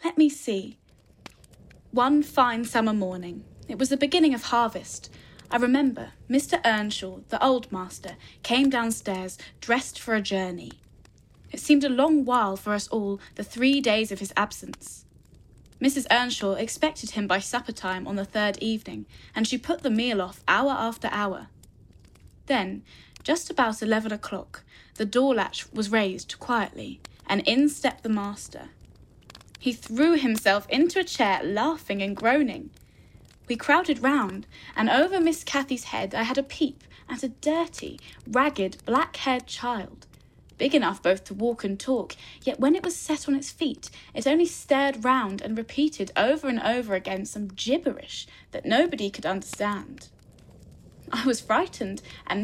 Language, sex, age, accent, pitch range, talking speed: English, female, 10-29, British, 205-275 Hz, 160 wpm